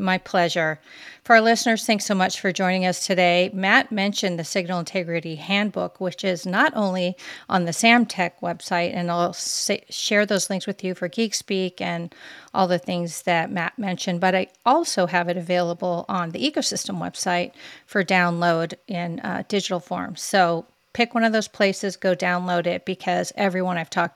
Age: 40-59